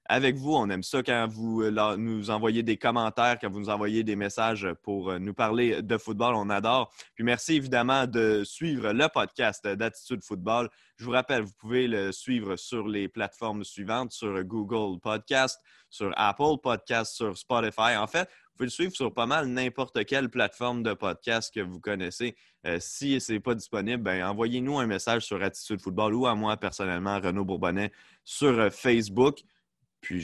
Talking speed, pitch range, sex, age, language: 175 wpm, 100-125 Hz, male, 20-39, French